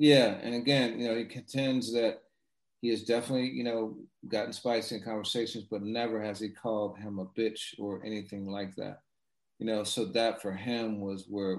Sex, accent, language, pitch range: male, American, English, 100-120 Hz